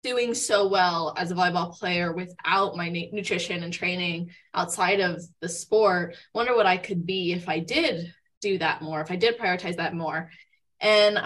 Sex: female